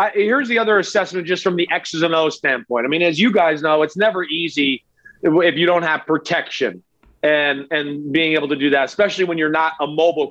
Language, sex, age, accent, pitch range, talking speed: English, male, 30-49, American, 175-215 Hz, 235 wpm